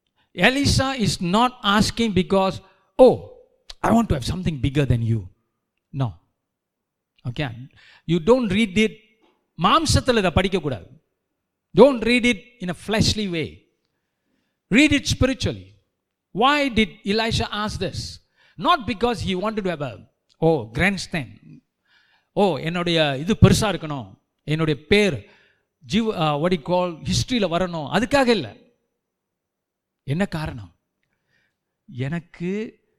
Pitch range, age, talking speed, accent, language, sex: 145-210 Hz, 50-69, 115 wpm, native, Tamil, male